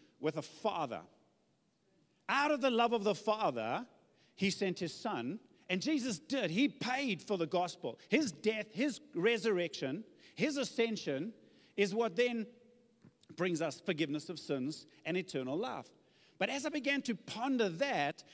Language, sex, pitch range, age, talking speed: English, male, 185-265 Hz, 50-69, 150 wpm